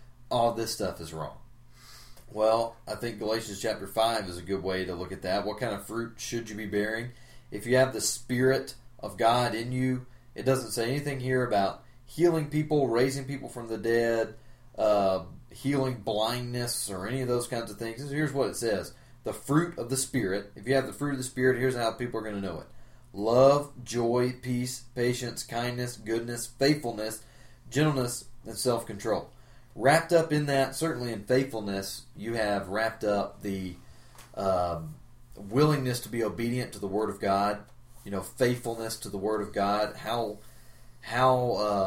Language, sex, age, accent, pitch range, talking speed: English, male, 30-49, American, 105-125 Hz, 180 wpm